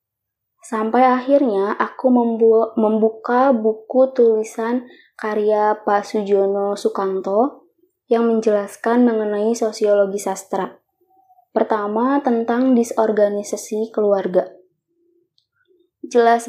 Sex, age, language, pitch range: female, 20-39, Indonesian, 210-245 Hz